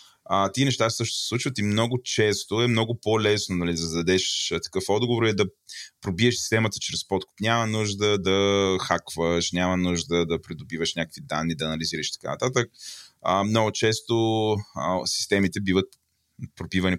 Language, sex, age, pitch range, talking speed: Bulgarian, male, 20-39, 90-110 Hz, 155 wpm